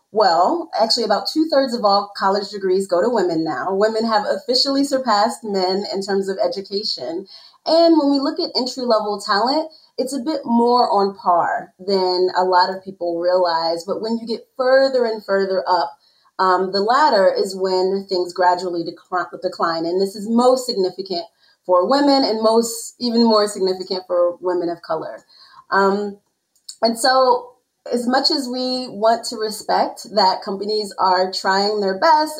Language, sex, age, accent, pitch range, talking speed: English, female, 30-49, American, 190-250 Hz, 165 wpm